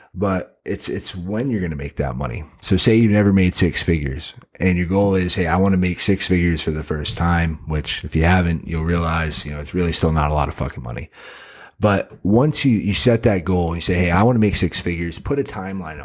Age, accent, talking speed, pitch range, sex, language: 30-49, American, 260 wpm, 85-100 Hz, male, English